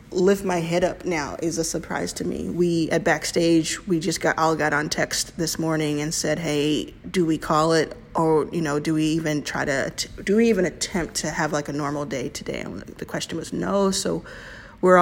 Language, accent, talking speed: English, American, 220 wpm